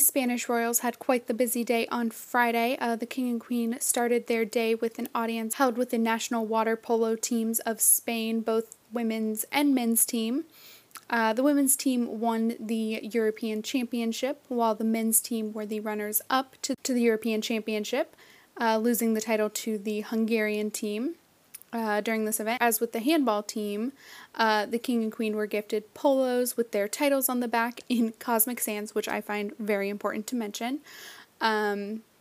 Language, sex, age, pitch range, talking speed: English, female, 10-29, 215-245 Hz, 180 wpm